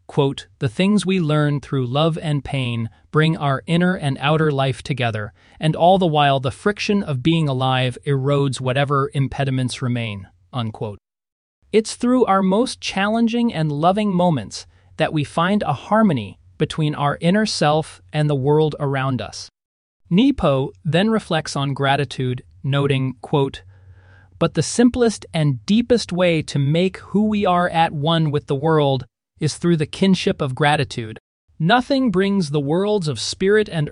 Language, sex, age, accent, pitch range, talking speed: English, male, 30-49, American, 130-185 Hz, 155 wpm